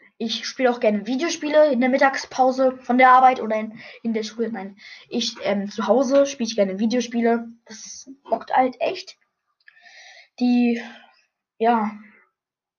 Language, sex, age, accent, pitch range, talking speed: German, female, 10-29, German, 210-255 Hz, 145 wpm